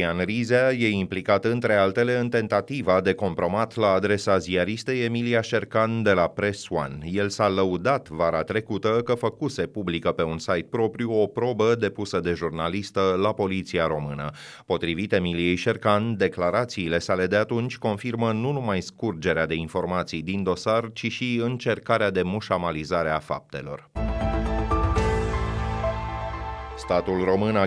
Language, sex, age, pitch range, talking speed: Romanian, male, 30-49, 90-110 Hz, 140 wpm